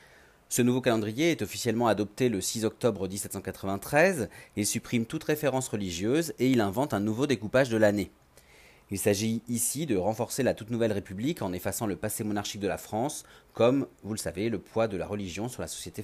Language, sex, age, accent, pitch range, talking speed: French, male, 30-49, French, 100-125 Hz, 195 wpm